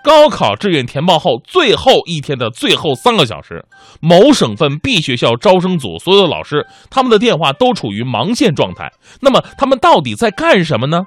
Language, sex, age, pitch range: Chinese, male, 20-39, 135-225 Hz